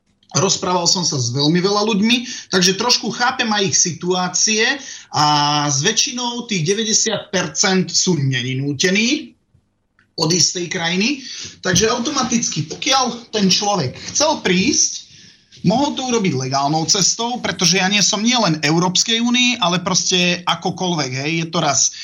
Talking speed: 135 wpm